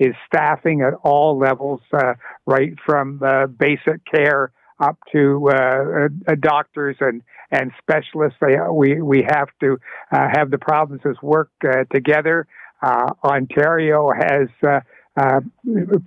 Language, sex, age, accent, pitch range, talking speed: English, male, 60-79, American, 135-150 Hz, 130 wpm